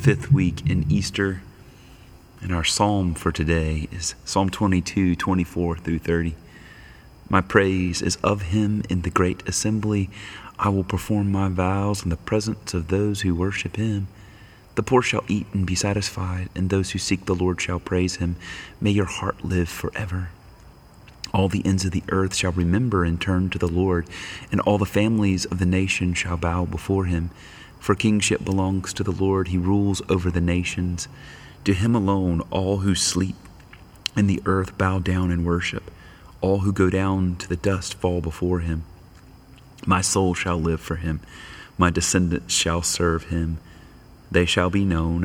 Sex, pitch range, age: male, 85-100 Hz, 30-49